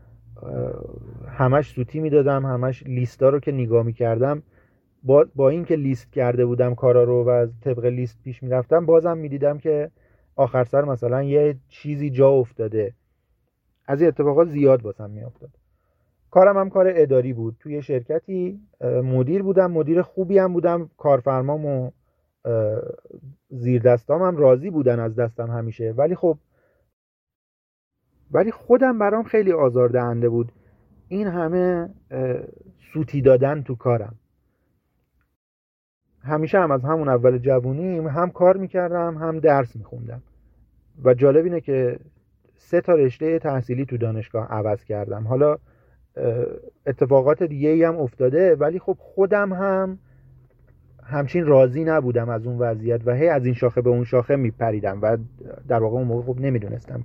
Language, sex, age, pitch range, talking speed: Persian, male, 40-59, 120-155 Hz, 145 wpm